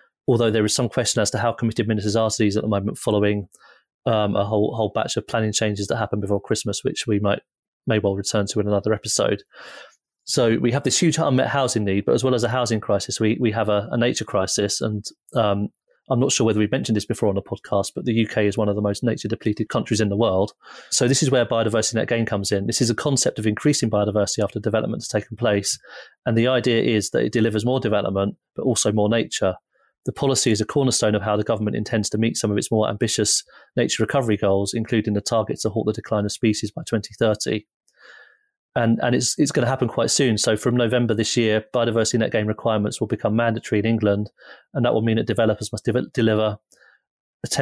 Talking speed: 235 wpm